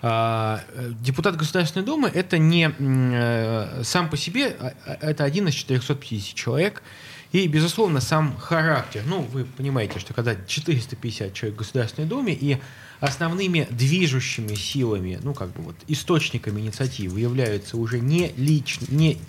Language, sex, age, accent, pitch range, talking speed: Russian, male, 20-39, native, 115-155 Hz, 135 wpm